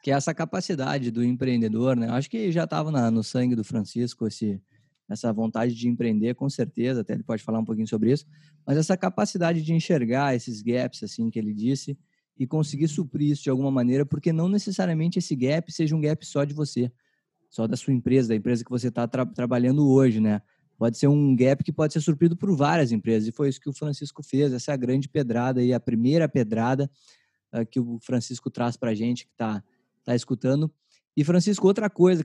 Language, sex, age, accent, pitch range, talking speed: Portuguese, male, 20-39, Brazilian, 120-160 Hz, 210 wpm